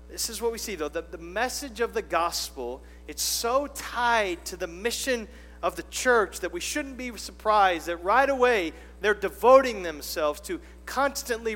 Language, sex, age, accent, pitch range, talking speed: English, male, 40-59, American, 170-240 Hz, 175 wpm